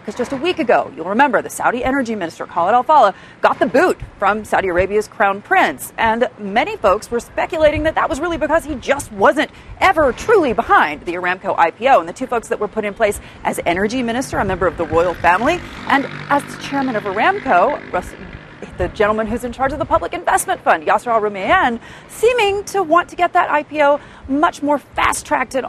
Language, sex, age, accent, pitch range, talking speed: English, female, 40-59, American, 205-280 Hz, 205 wpm